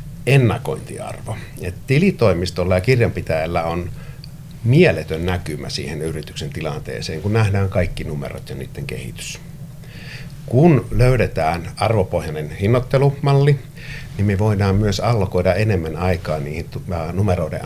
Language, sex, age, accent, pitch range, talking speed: Finnish, male, 60-79, native, 90-135 Hz, 100 wpm